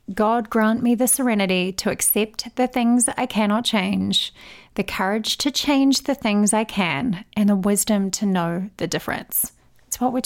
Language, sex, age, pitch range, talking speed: English, female, 30-49, 205-250 Hz, 175 wpm